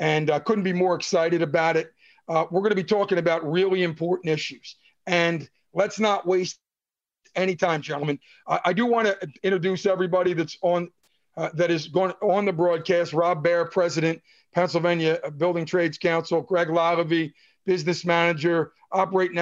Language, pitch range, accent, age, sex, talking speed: English, 165-185 Hz, American, 40-59, male, 170 wpm